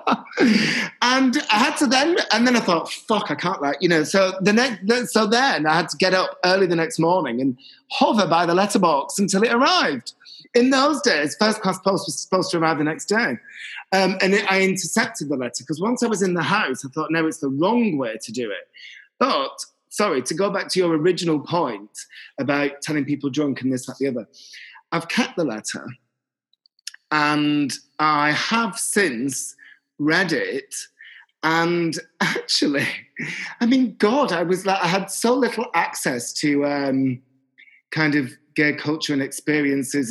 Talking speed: 185 wpm